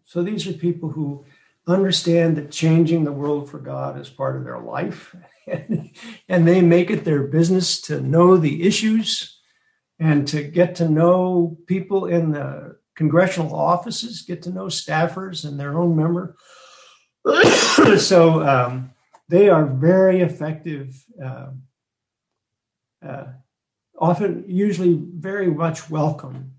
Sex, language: male, English